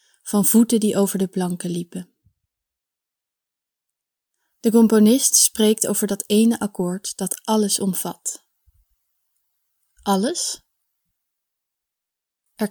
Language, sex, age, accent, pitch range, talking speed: Dutch, female, 20-39, Dutch, 190-215 Hz, 90 wpm